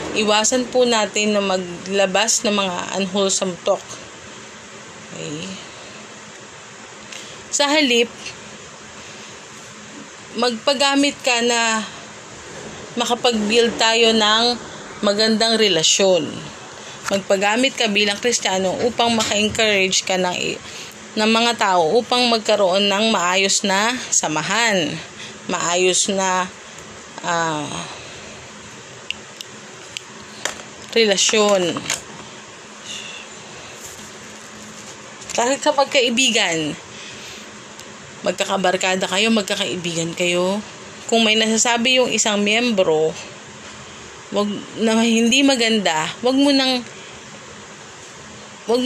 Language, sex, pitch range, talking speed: Filipino, female, 190-235 Hz, 75 wpm